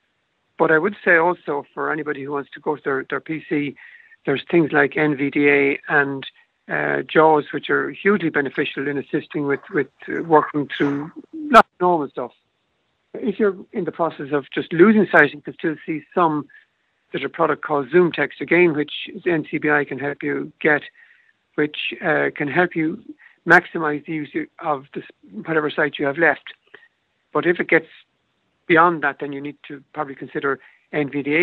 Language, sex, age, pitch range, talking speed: English, male, 60-79, 145-175 Hz, 170 wpm